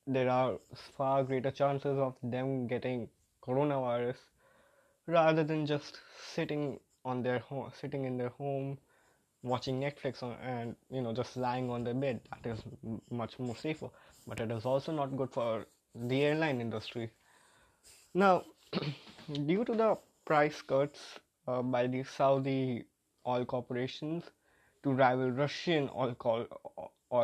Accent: Indian